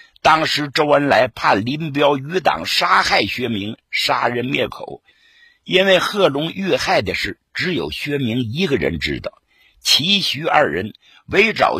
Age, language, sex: 50-69, Chinese, male